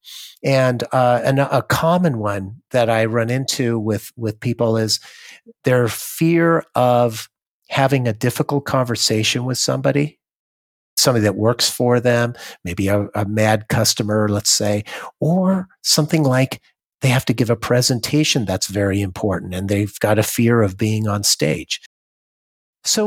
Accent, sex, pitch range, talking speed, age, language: American, male, 110-145 Hz, 150 wpm, 50-69, English